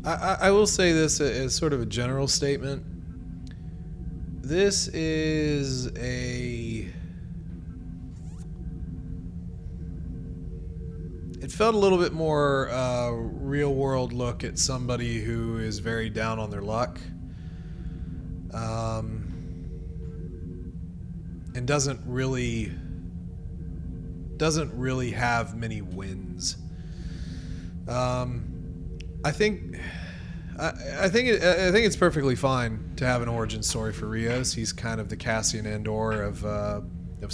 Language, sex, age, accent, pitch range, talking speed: English, male, 30-49, American, 85-130 Hz, 110 wpm